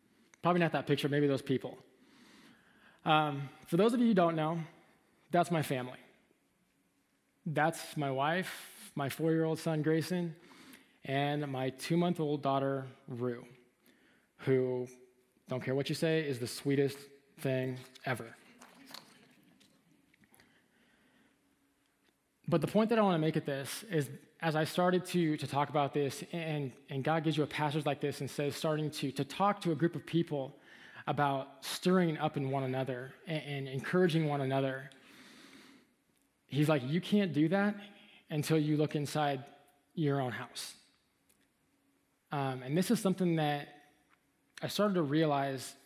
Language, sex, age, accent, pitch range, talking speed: English, male, 20-39, American, 140-170 Hz, 150 wpm